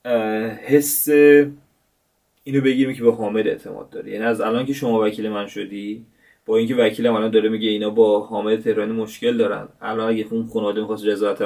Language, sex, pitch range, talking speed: Persian, male, 110-140 Hz, 185 wpm